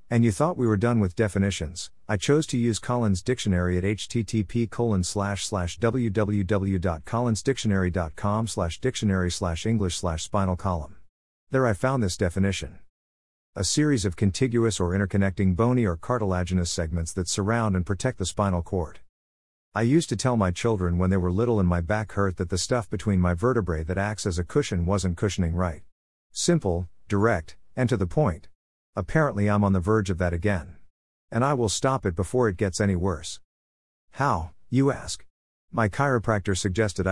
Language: English